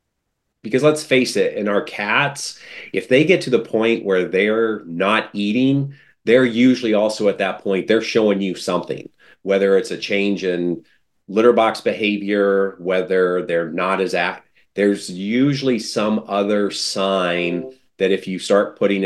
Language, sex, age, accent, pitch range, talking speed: English, male, 30-49, American, 95-110 Hz, 160 wpm